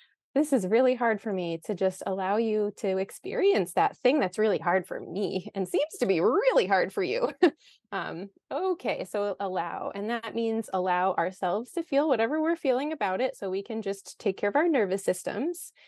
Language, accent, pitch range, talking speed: English, American, 200-290 Hz, 200 wpm